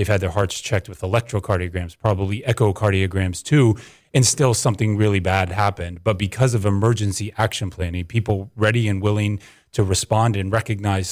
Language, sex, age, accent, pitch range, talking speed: English, male, 30-49, American, 95-115 Hz, 160 wpm